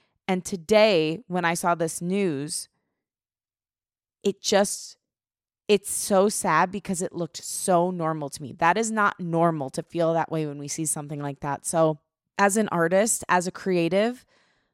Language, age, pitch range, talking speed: English, 20-39, 165-210 Hz, 165 wpm